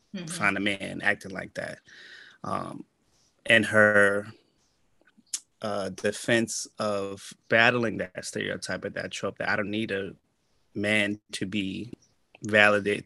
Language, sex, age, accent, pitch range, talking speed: English, male, 20-39, American, 100-115 Hz, 125 wpm